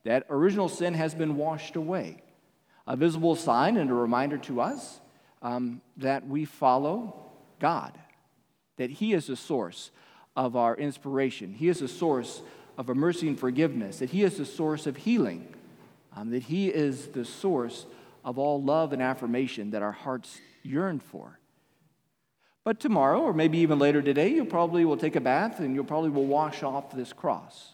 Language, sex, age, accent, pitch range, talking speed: English, male, 40-59, American, 130-170 Hz, 175 wpm